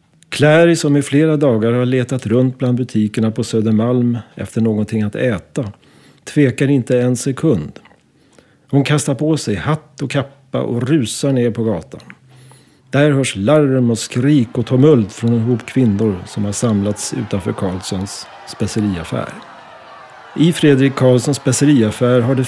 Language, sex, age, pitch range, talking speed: Swedish, male, 40-59, 110-140 Hz, 145 wpm